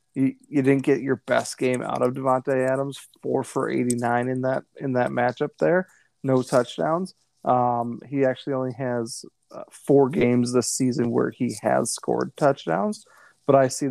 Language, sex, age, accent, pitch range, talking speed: English, male, 20-39, American, 120-135 Hz, 175 wpm